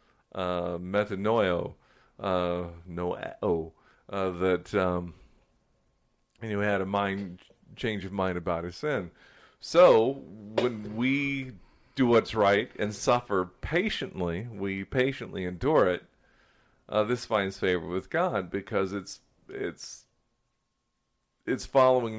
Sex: male